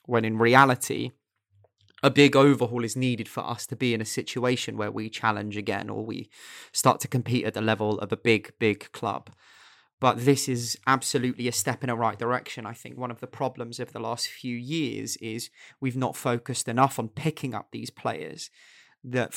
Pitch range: 115-130 Hz